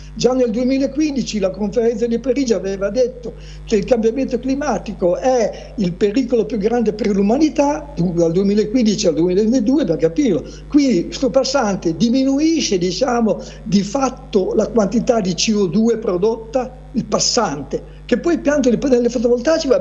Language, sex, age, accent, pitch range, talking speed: Italian, male, 60-79, native, 195-260 Hz, 140 wpm